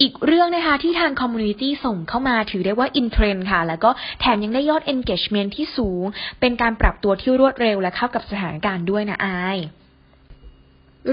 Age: 10-29